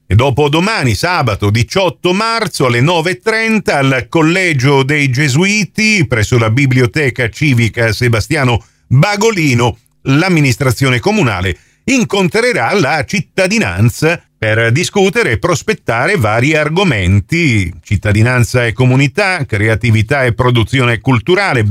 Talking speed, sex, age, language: 100 wpm, male, 50-69, Italian